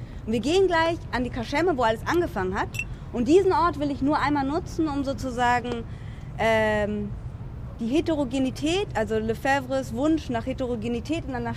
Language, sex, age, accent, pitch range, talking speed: German, female, 20-39, German, 235-320 Hz, 160 wpm